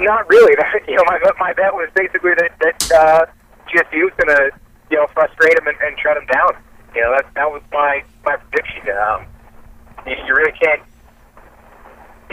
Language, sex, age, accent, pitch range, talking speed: English, male, 40-59, American, 150-200 Hz, 180 wpm